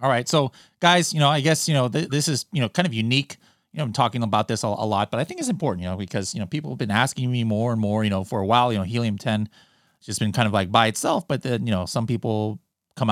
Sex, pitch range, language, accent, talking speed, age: male, 105-140 Hz, English, American, 305 wpm, 30-49